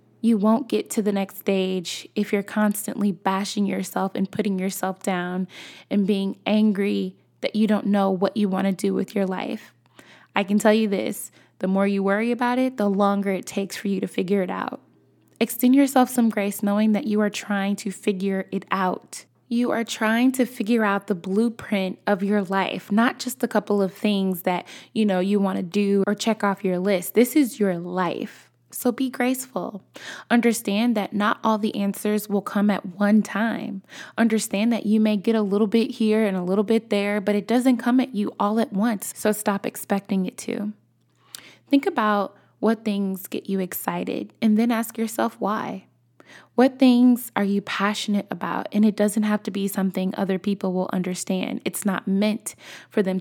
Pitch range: 195-225 Hz